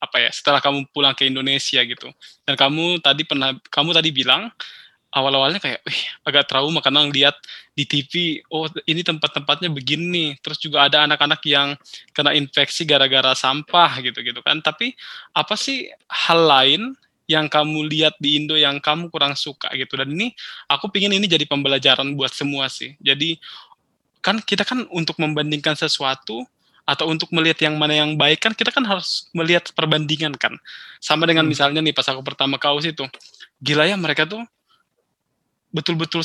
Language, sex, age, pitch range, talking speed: Indonesian, male, 20-39, 140-165 Hz, 165 wpm